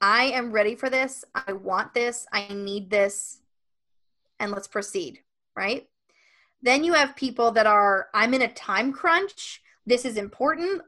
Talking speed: 160 wpm